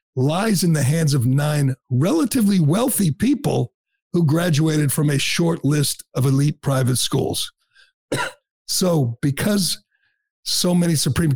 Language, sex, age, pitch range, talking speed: English, male, 50-69, 135-170 Hz, 125 wpm